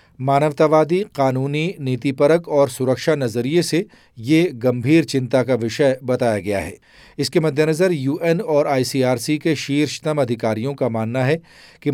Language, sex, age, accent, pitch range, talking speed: Hindi, male, 40-59, native, 125-150 Hz, 150 wpm